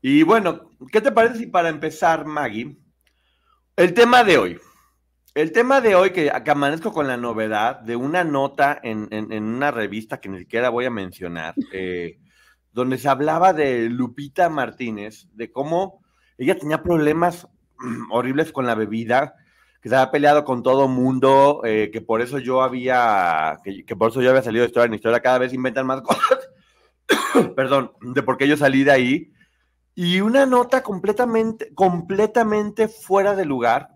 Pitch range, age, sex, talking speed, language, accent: 115-175 Hz, 40-59, male, 175 wpm, Spanish, Mexican